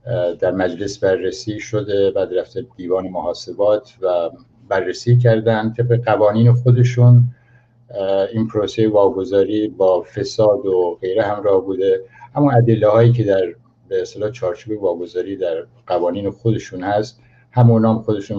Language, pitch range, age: Persian, 100-120 Hz, 60-79